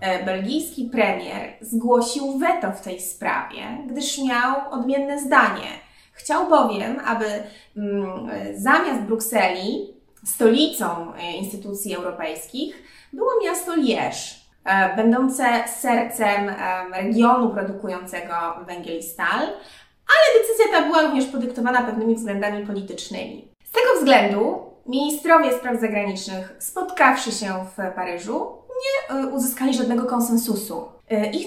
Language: Polish